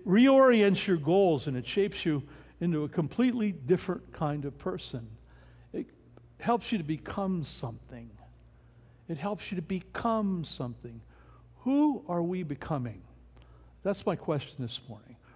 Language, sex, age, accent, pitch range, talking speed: English, male, 60-79, American, 120-200 Hz, 135 wpm